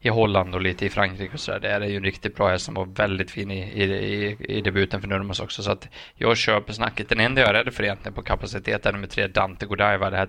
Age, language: 20-39, Swedish